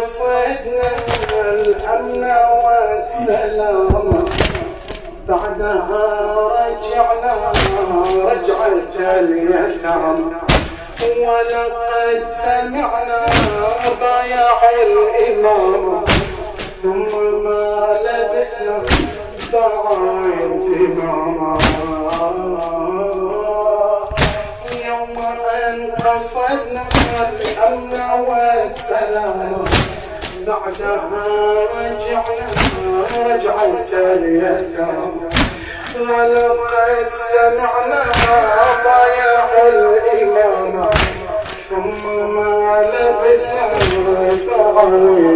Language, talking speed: Arabic, 45 wpm